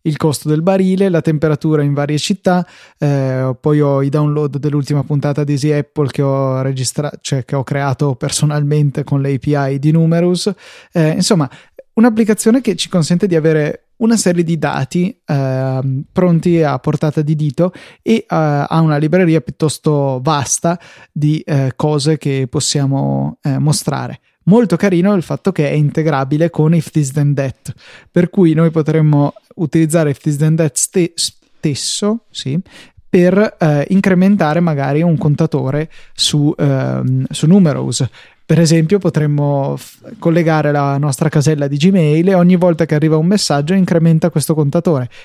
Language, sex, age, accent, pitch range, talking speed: Italian, male, 20-39, native, 145-170 Hz, 150 wpm